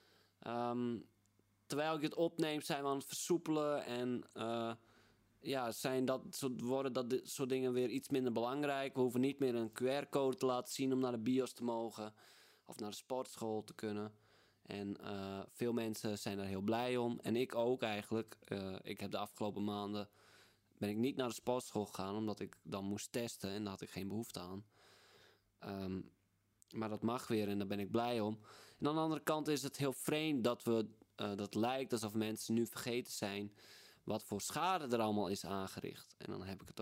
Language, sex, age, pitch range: Dutch, male, 20-39, 100-125 Hz